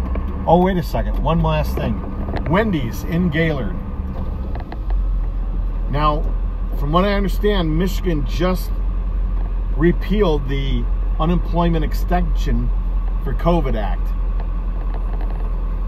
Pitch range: 95-140 Hz